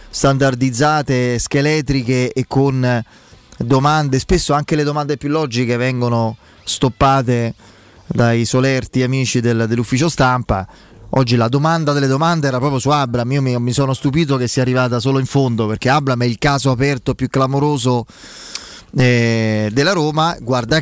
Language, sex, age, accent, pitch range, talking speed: Italian, male, 20-39, native, 115-140 Hz, 140 wpm